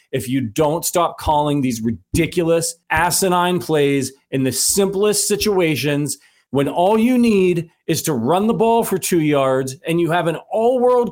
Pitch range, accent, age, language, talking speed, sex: 175-255 Hz, American, 40-59, English, 160 wpm, male